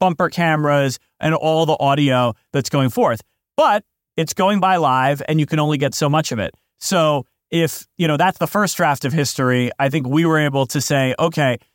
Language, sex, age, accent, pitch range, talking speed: English, male, 40-59, American, 135-165 Hz, 210 wpm